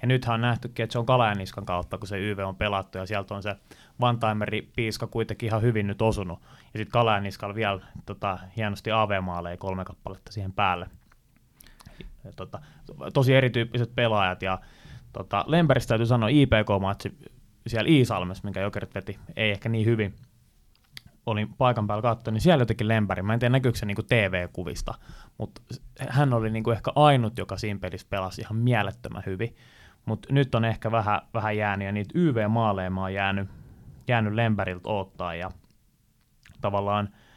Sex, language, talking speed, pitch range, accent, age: male, Finnish, 160 wpm, 100-115 Hz, native, 20-39